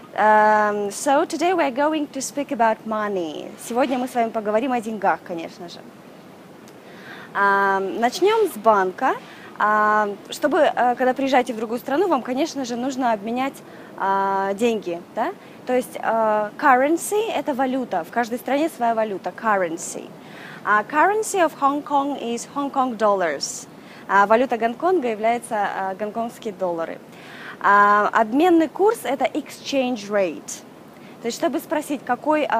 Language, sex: Russian, female